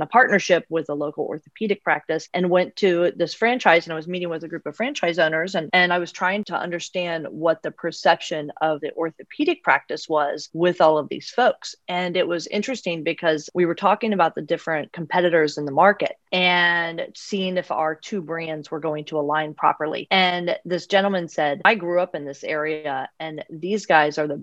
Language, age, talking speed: English, 30-49, 205 wpm